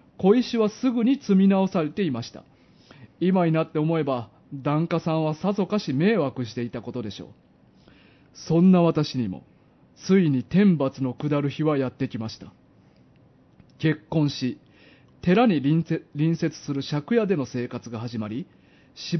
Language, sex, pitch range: Japanese, male, 130-190 Hz